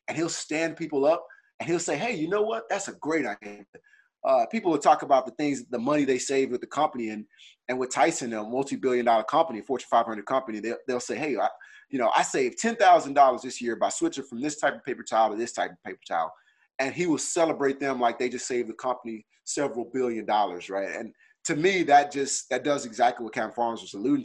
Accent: American